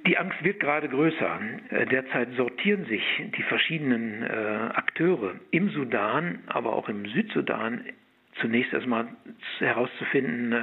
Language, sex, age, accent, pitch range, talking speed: German, male, 60-79, German, 125-200 Hz, 115 wpm